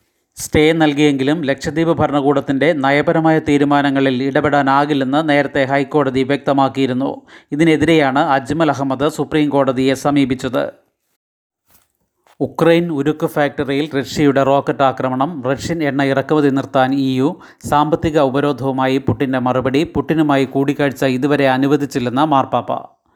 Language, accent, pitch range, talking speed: Malayalam, native, 135-150 Hz, 90 wpm